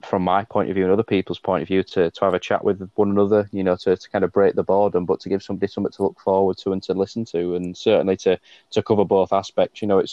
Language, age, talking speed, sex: English, 20-39, 300 wpm, male